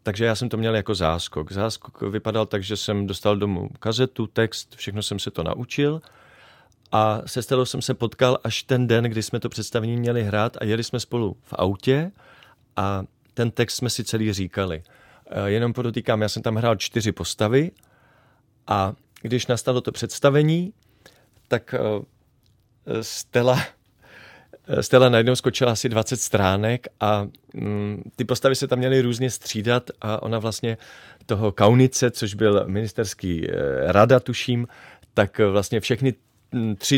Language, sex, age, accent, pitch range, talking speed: Czech, male, 30-49, native, 105-125 Hz, 150 wpm